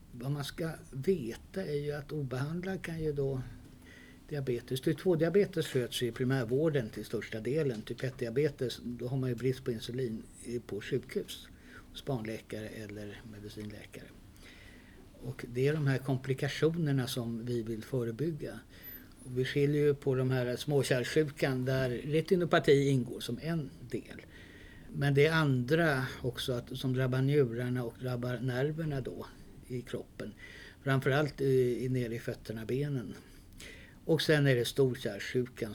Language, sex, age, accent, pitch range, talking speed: Swedish, male, 60-79, native, 110-140 Hz, 140 wpm